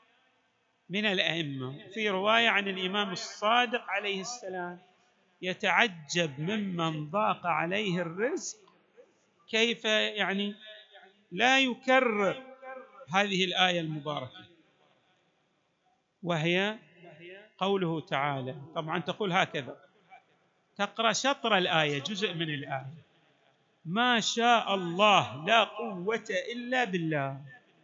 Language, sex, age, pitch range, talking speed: Arabic, male, 50-69, 165-225 Hz, 85 wpm